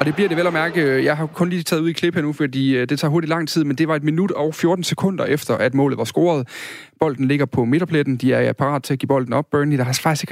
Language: Danish